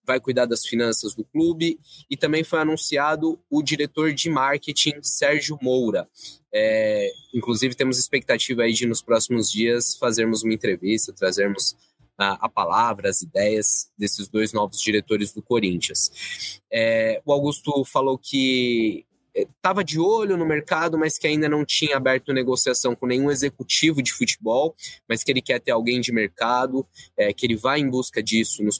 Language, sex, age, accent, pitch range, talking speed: Portuguese, male, 20-39, Brazilian, 115-150 Hz, 165 wpm